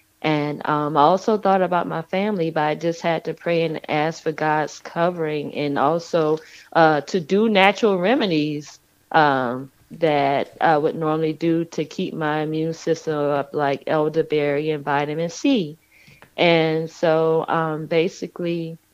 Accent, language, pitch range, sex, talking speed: American, English, 155-175 Hz, female, 150 wpm